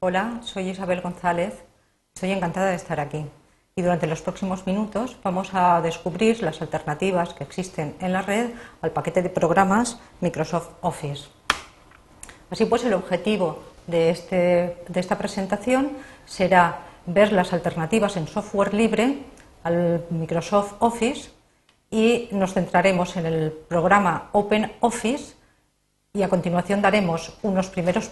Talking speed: 130 wpm